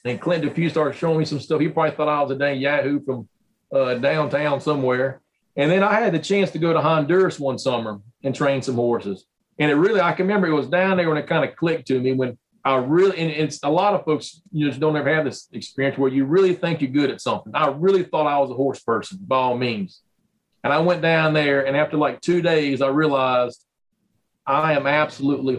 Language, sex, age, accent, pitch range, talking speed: English, male, 40-59, American, 140-175 Hz, 240 wpm